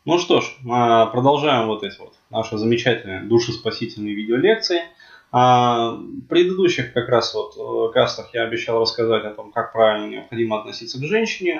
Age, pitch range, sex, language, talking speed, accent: 20-39, 115-170 Hz, male, Russian, 145 wpm, native